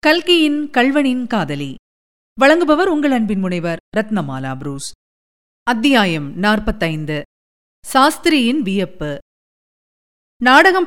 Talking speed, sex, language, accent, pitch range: 75 wpm, female, Tamil, native, 205-285 Hz